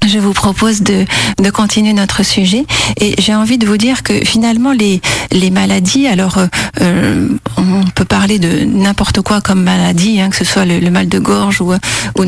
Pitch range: 185-215 Hz